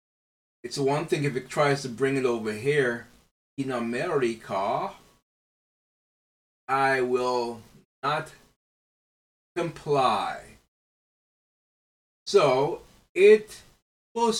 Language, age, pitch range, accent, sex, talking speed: English, 30-49, 140-200 Hz, American, male, 85 wpm